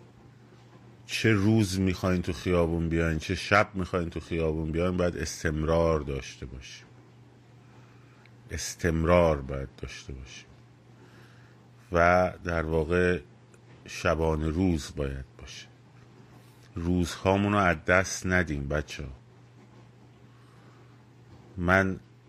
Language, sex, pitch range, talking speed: Persian, male, 85-115 Hz, 90 wpm